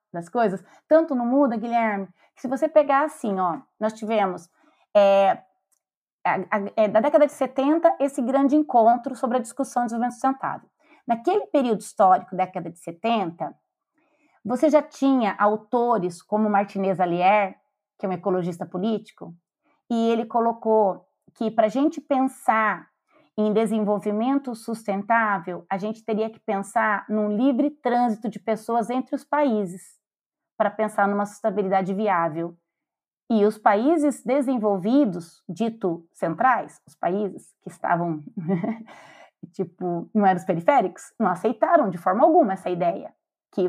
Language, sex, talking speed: Portuguese, female, 140 wpm